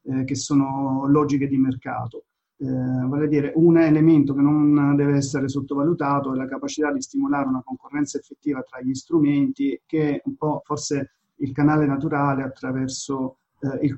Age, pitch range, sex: 40-59, 135-150 Hz, male